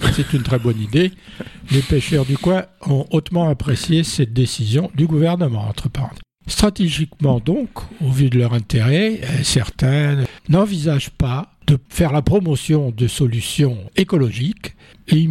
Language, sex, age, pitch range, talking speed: French, male, 60-79, 120-155 Hz, 140 wpm